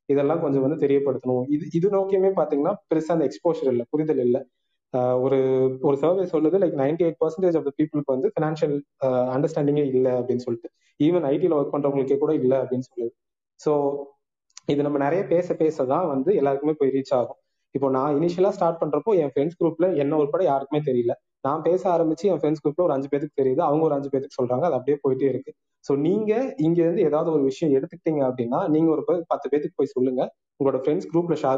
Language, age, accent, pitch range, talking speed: Tamil, 20-39, native, 135-160 Hz, 190 wpm